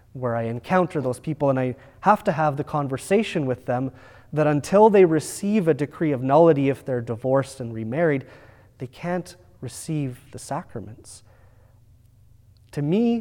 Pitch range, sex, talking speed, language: 110-160 Hz, male, 155 wpm, English